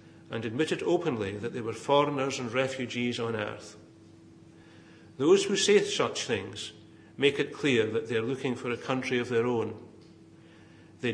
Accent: British